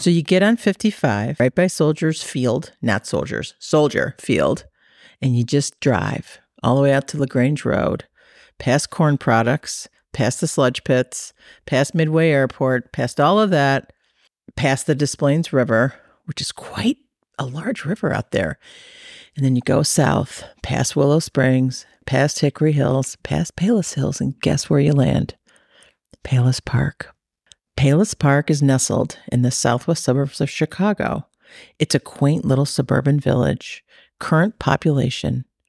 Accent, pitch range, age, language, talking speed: American, 130-175 Hz, 50-69, English, 150 wpm